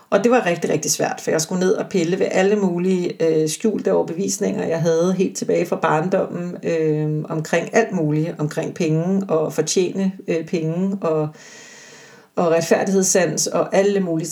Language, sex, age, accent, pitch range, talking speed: Danish, female, 40-59, native, 160-200 Hz, 170 wpm